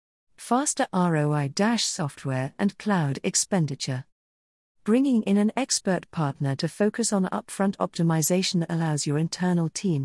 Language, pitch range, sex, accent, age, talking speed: English, 155-205 Hz, female, British, 50-69, 120 wpm